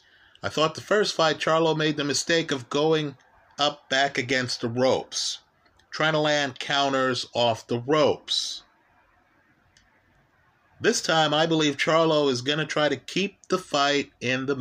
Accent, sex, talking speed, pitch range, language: American, male, 155 wpm, 120-160 Hz, English